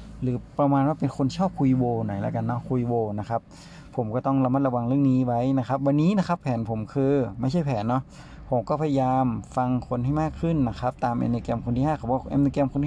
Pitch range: 120-145 Hz